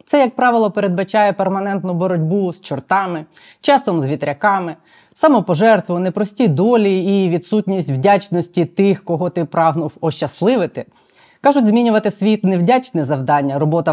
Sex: female